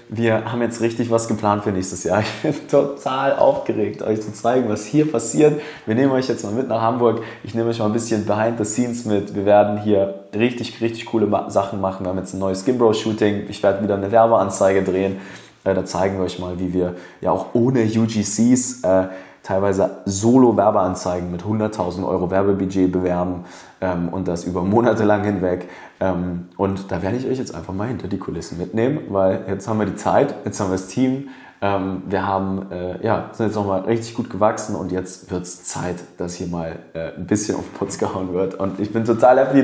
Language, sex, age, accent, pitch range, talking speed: German, male, 20-39, German, 95-115 Hz, 210 wpm